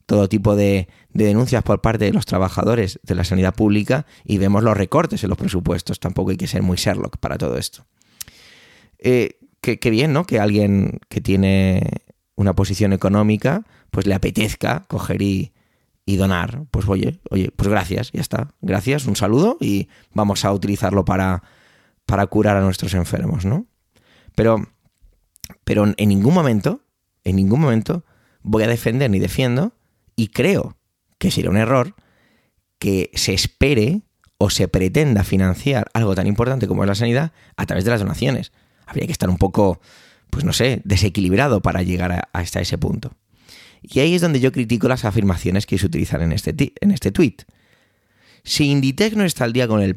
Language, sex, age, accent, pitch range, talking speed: Spanish, male, 20-39, Spanish, 95-125 Hz, 175 wpm